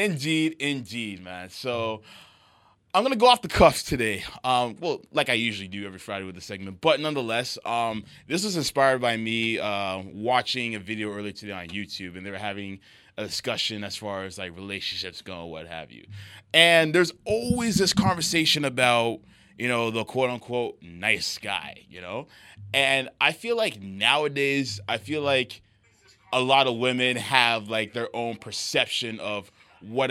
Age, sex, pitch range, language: 20-39, male, 100-130 Hz, English